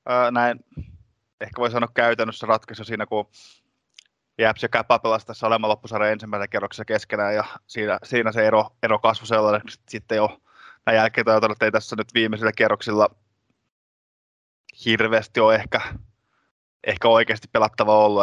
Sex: male